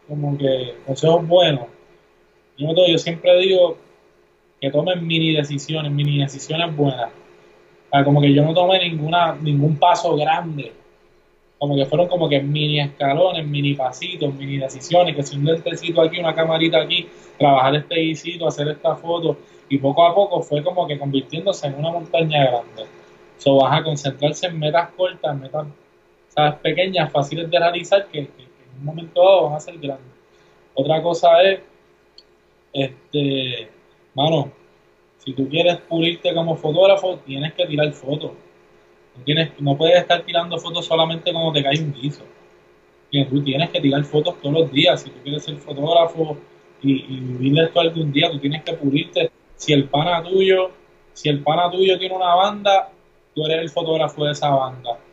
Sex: male